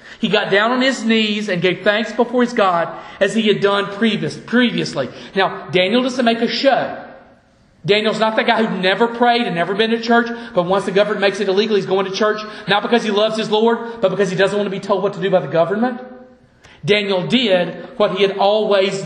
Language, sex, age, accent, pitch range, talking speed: English, male, 40-59, American, 190-225 Hz, 225 wpm